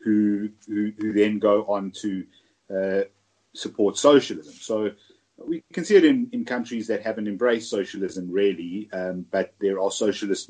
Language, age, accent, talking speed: English, 30-49, British, 155 wpm